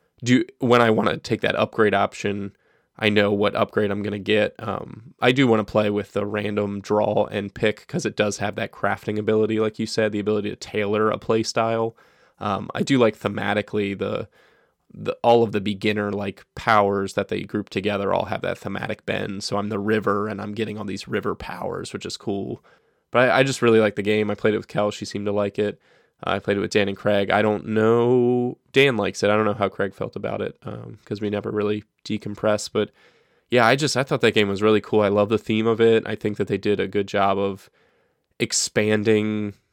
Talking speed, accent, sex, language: 235 wpm, American, male, English